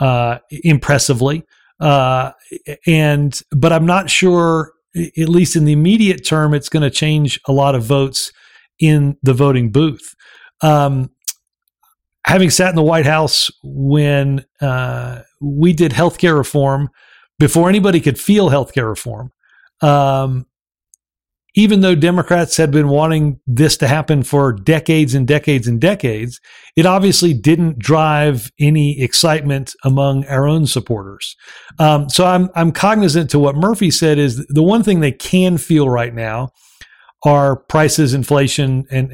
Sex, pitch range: male, 135-165 Hz